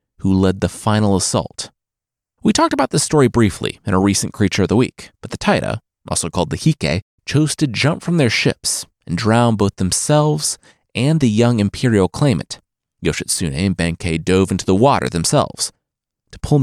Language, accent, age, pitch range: English, American, 30-49, 95-135 Hz